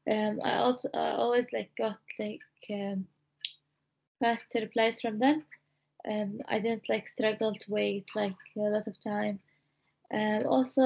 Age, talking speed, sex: 20-39, 150 wpm, female